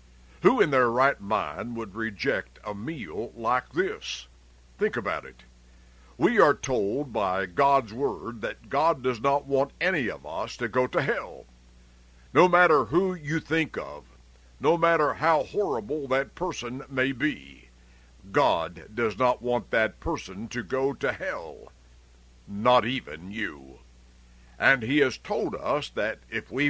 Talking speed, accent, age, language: 150 wpm, American, 60-79, English